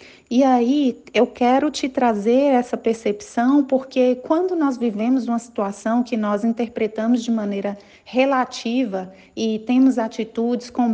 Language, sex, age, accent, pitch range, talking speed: Portuguese, female, 40-59, Brazilian, 215-250 Hz, 130 wpm